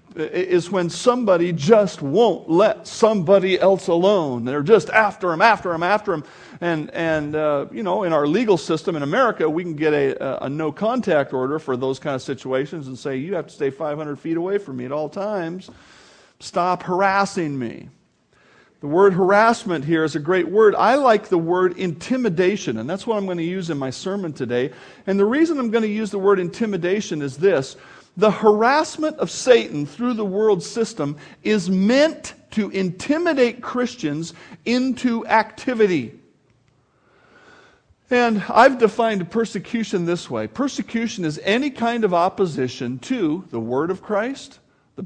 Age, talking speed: 40-59, 170 wpm